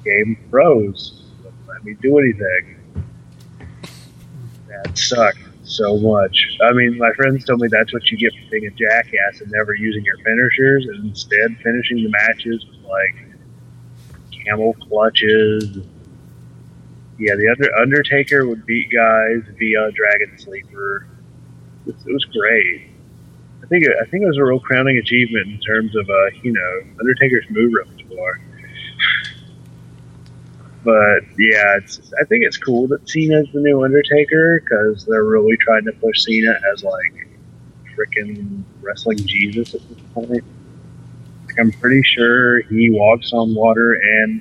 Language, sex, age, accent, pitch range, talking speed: English, male, 30-49, American, 100-120 Hz, 145 wpm